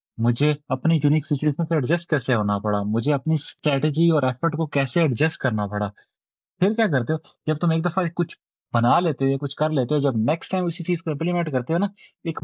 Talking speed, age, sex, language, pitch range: 225 wpm, 20-39, male, Urdu, 110-140 Hz